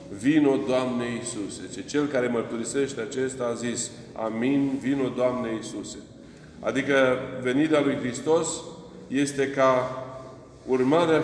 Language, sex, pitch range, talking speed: Romanian, male, 120-145 Hz, 110 wpm